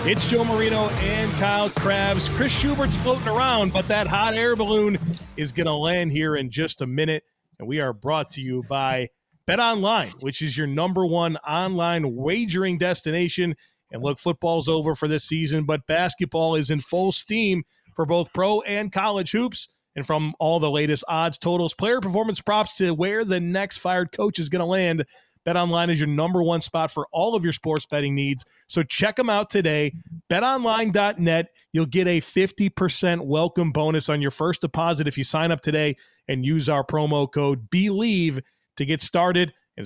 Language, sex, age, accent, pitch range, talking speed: English, male, 30-49, American, 150-190 Hz, 185 wpm